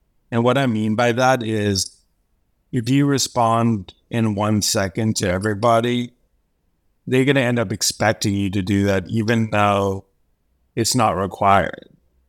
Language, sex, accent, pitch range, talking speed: English, male, American, 95-115 Hz, 145 wpm